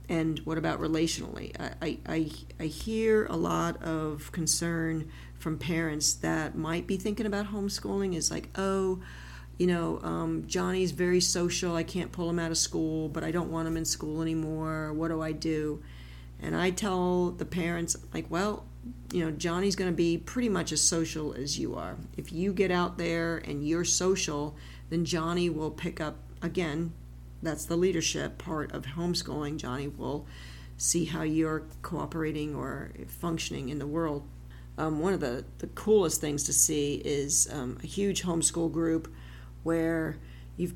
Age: 40-59